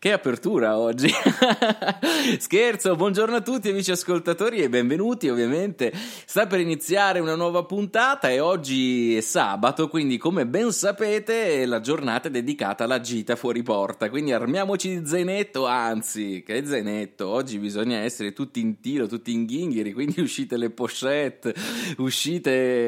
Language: Italian